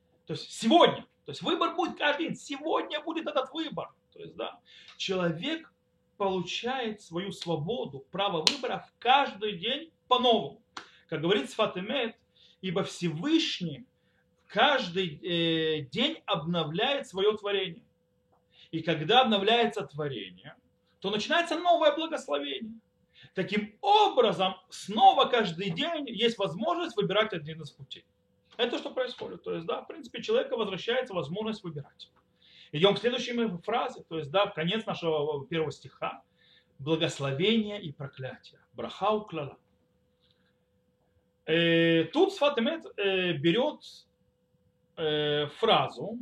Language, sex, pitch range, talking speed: Russian, male, 165-255 Hz, 115 wpm